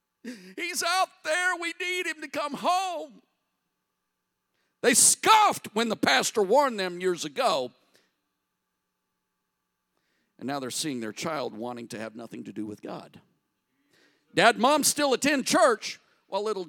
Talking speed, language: 140 wpm, English